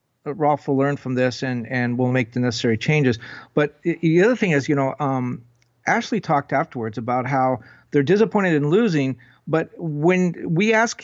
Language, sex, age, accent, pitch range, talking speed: English, male, 50-69, American, 125-165 Hz, 180 wpm